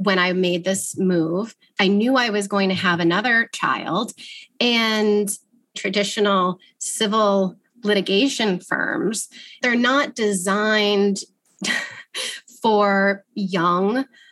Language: English